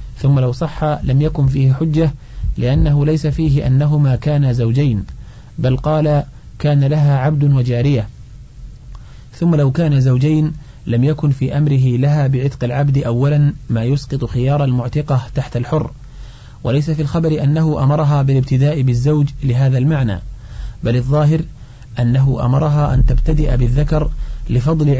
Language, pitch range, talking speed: Arabic, 125-150 Hz, 130 wpm